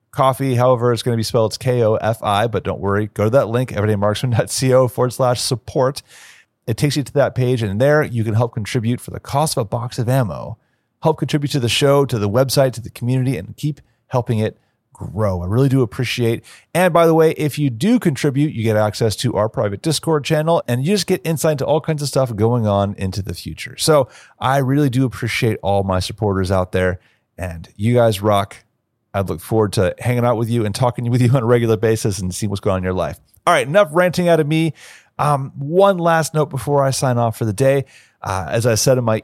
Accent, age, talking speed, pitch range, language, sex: American, 30-49, 235 wpm, 110-140 Hz, English, male